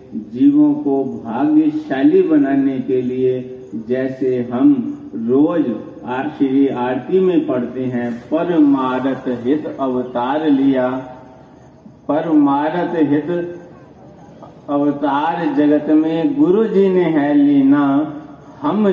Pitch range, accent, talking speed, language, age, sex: 130-190 Hz, native, 85 wpm, Hindi, 50-69, male